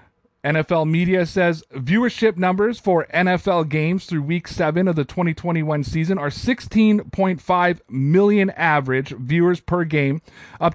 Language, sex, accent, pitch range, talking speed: English, male, American, 150-185 Hz, 130 wpm